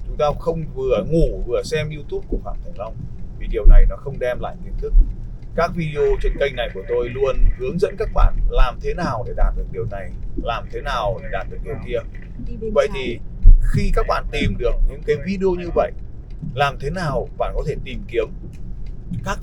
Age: 30-49